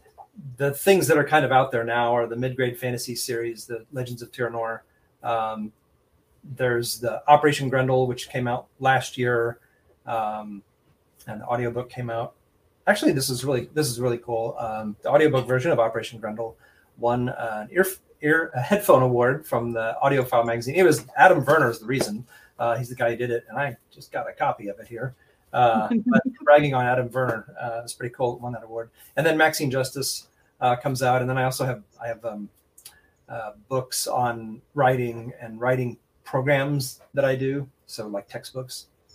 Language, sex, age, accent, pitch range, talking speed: English, male, 30-49, American, 115-135 Hz, 190 wpm